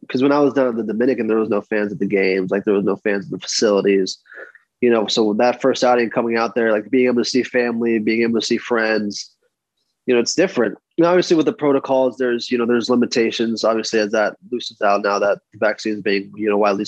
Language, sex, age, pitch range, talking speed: English, male, 20-39, 115-130 Hz, 250 wpm